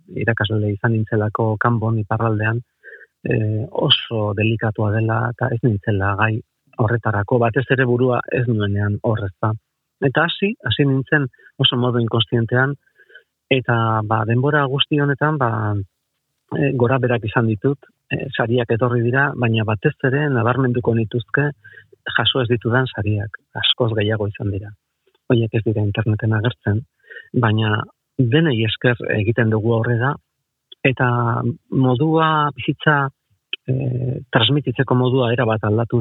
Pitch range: 110-135 Hz